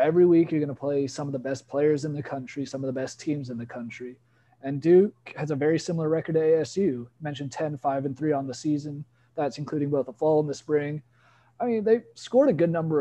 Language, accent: English, American